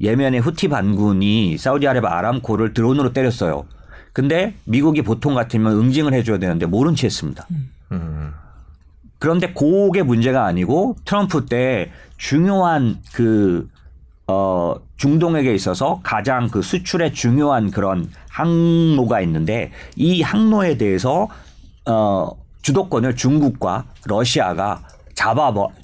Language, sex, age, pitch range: Korean, male, 40-59, 100-145 Hz